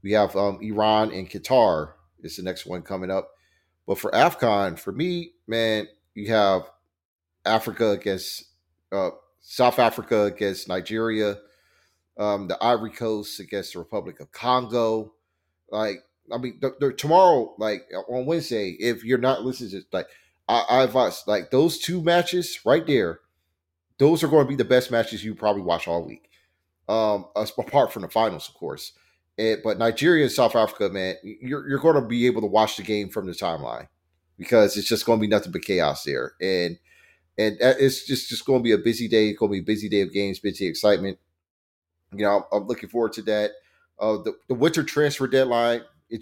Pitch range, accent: 100-130 Hz, American